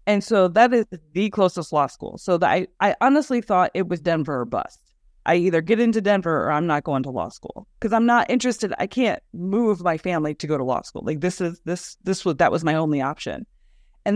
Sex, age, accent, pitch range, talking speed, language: female, 20-39, American, 155-205 Hz, 235 wpm, English